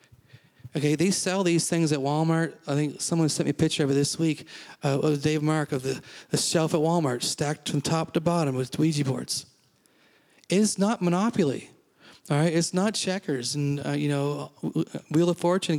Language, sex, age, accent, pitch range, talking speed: English, male, 30-49, American, 140-170 Hz, 195 wpm